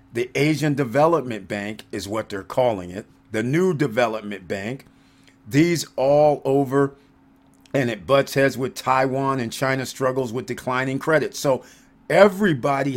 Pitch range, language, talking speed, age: 110-140 Hz, English, 140 wpm, 40-59